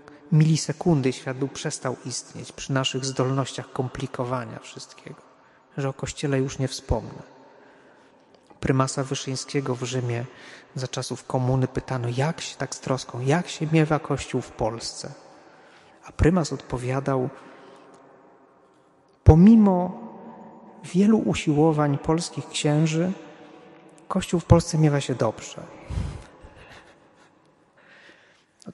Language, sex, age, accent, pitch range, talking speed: Polish, male, 30-49, native, 135-170 Hz, 105 wpm